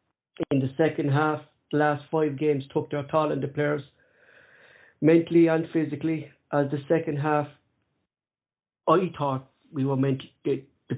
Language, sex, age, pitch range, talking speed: English, male, 50-69, 145-165 Hz, 155 wpm